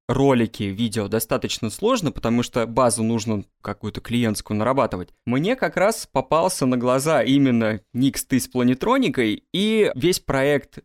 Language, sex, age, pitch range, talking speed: Russian, male, 20-39, 120-165 Hz, 140 wpm